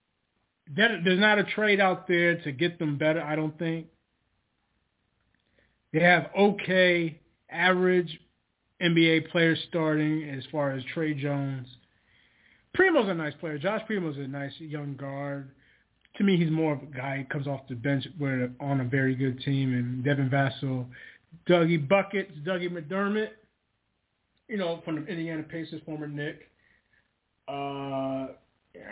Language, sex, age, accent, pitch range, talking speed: English, male, 30-49, American, 150-195 Hz, 145 wpm